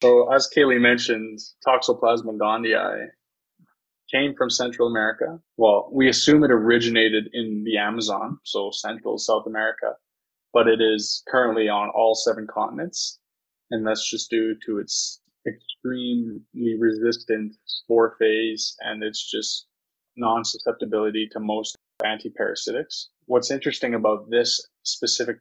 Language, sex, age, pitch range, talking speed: English, male, 20-39, 110-120 Hz, 125 wpm